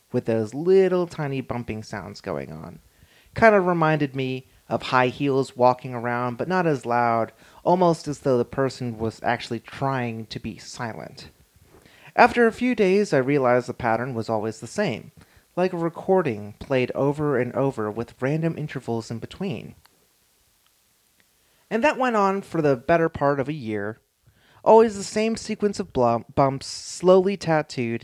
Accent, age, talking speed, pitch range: American, 30-49, 160 wpm, 115-180 Hz